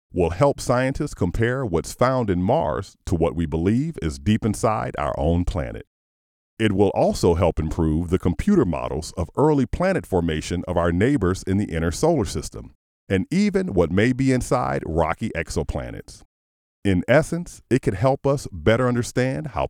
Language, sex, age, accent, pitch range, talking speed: English, male, 40-59, American, 80-125 Hz, 170 wpm